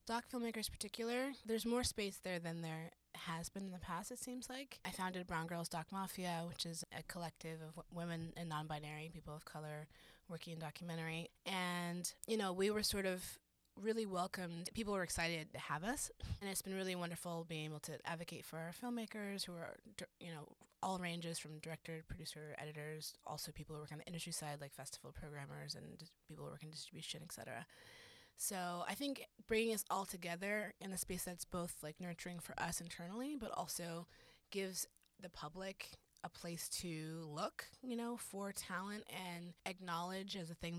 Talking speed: 190 wpm